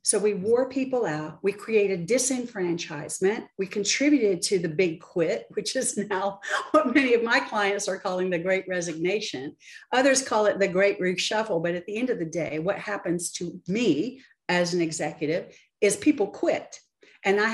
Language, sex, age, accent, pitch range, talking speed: English, female, 50-69, American, 175-235 Hz, 180 wpm